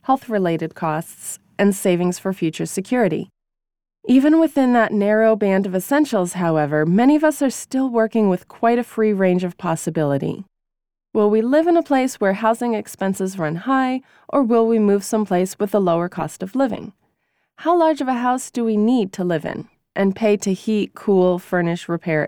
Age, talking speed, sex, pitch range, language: 20-39, 185 wpm, female, 180-240 Hz, English